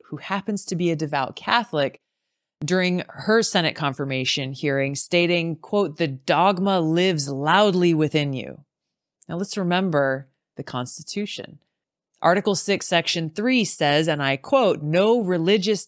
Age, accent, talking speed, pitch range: 20-39, American, 130 wpm, 150-190 Hz